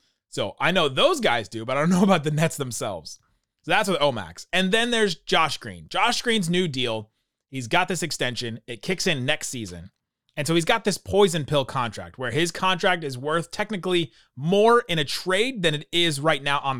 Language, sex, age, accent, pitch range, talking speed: English, male, 30-49, American, 125-175 Hz, 215 wpm